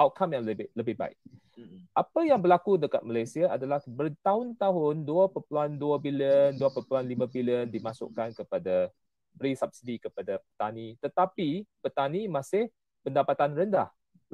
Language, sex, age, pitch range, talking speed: Malay, male, 30-49, 125-185 Hz, 115 wpm